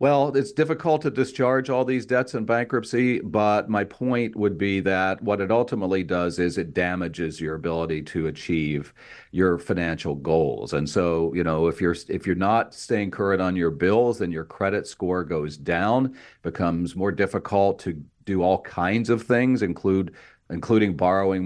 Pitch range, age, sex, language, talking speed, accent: 85-105 Hz, 40-59, male, English, 175 wpm, American